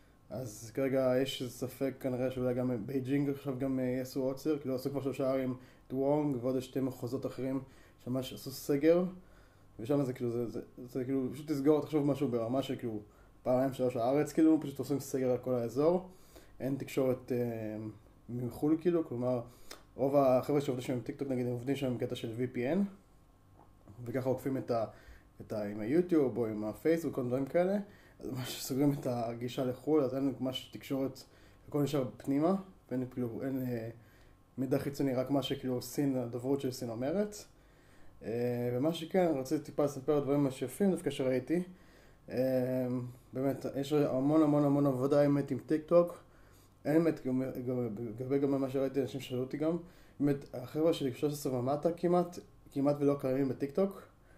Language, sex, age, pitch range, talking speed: Hebrew, male, 20-39, 125-145 Hz, 165 wpm